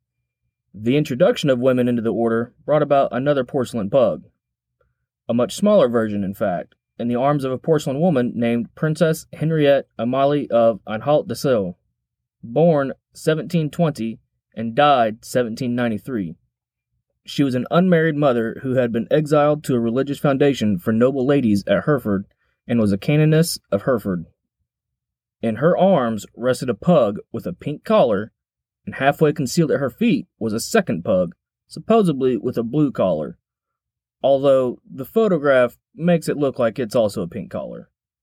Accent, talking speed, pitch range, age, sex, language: American, 155 wpm, 115-155 Hz, 20-39, male, English